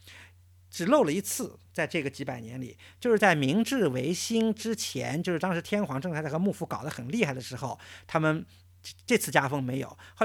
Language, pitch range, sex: Chinese, 115-195 Hz, male